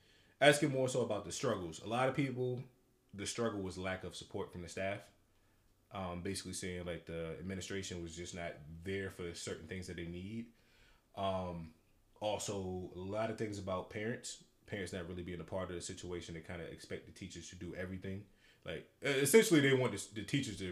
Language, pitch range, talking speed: English, 90-115 Hz, 195 wpm